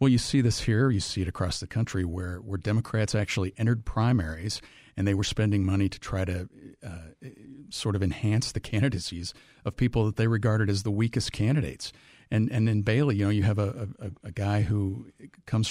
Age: 50-69